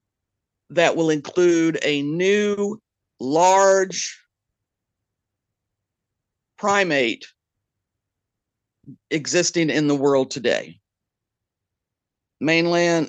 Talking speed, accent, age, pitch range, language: 60 wpm, American, 50-69, 110-185 Hz, English